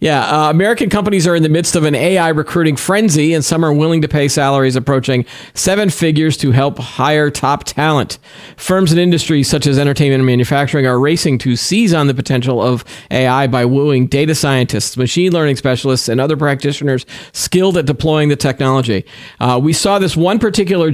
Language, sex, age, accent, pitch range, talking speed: English, male, 40-59, American, 115-150 Hz, 190 wpm